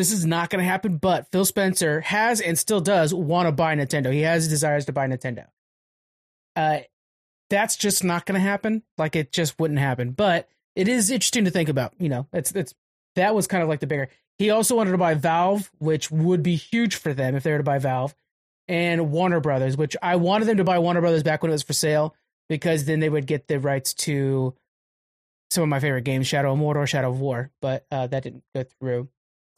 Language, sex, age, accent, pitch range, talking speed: English, male, 30-49, American, 145-185 Hz, 230 wpm